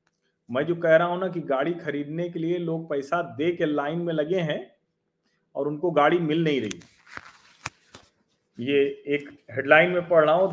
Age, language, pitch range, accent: 40-59, Hindi, 145-185 Hz, native